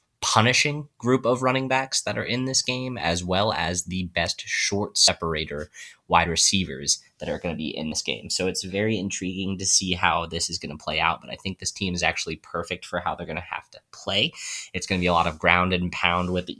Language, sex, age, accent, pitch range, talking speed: English, male, 20-39, American, 85-105 Hz, 245 wpm